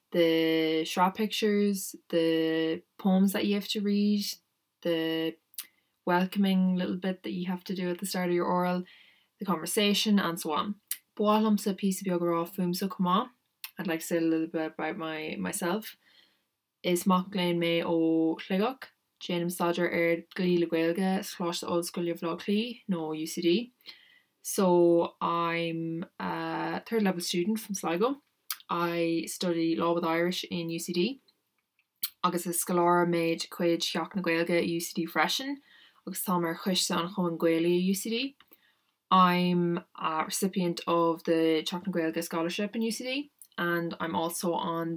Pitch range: 165-195 Hz